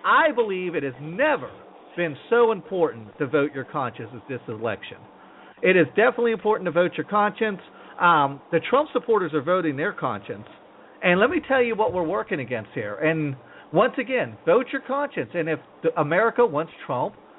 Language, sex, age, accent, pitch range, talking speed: English, male, 50-69, American, 145-225 Hz, 180 wpm